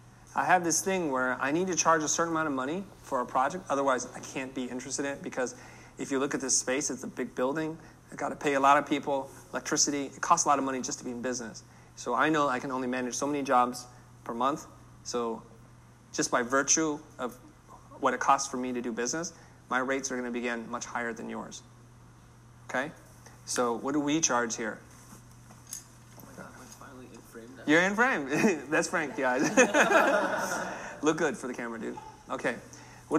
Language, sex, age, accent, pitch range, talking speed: English, male, 30-49, American, 125-150 Hz, 200 wpm